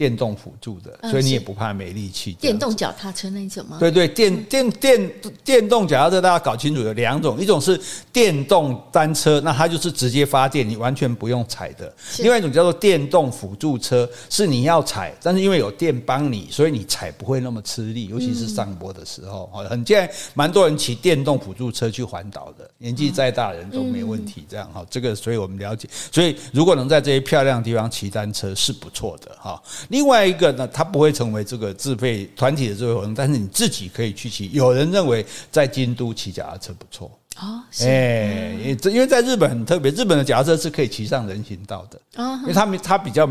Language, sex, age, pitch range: Chinese, male, 50-69, 110-160 Hz